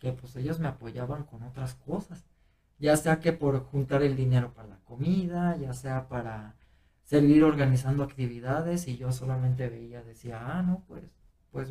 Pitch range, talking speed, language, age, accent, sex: 125-170 Hz, 170 wpm, Spanish, 40-59, Mexican, male